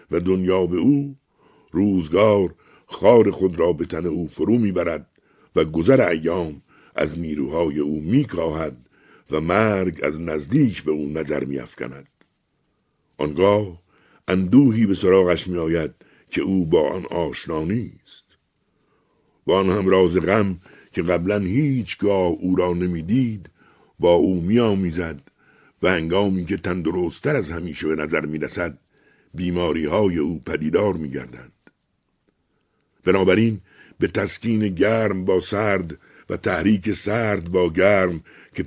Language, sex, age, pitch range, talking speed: Persian, male, 60-79, 85-105 Hz, 125 wpm